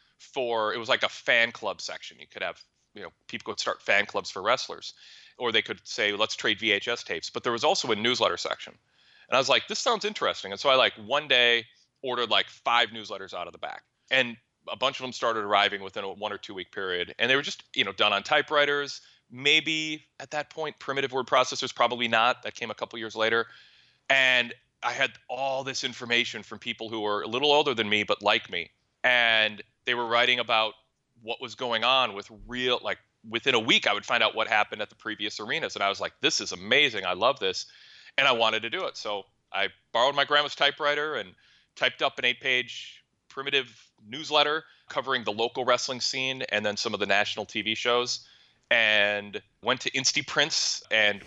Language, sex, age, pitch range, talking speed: English, male, 30-49, 110-135 Hz, 220 wpm